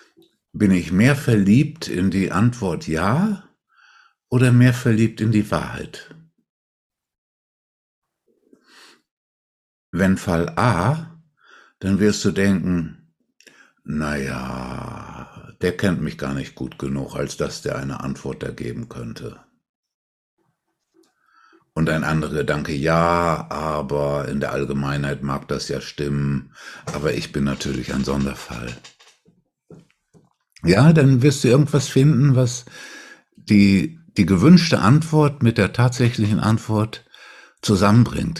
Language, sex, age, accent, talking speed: German, male, 60-79, German, 115 wpm